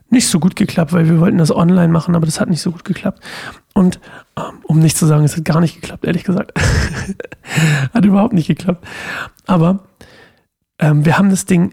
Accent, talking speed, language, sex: German, 200 wpm, German, male